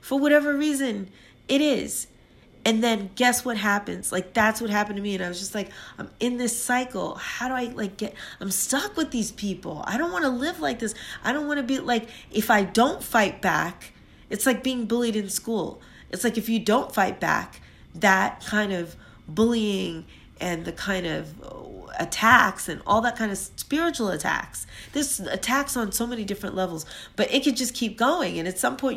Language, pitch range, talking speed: English, 195-250 Hz, 205 wpm